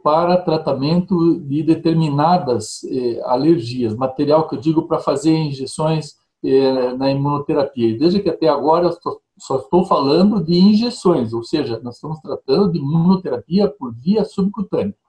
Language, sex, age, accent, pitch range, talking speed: Portuguese, male, 60-79, Brazilian, 135-175 Hz, 145 wpm